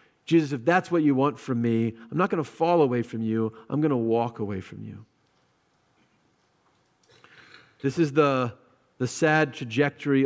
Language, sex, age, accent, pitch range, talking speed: English, male, 40-59, American, 120-155 Hz, 170 wpm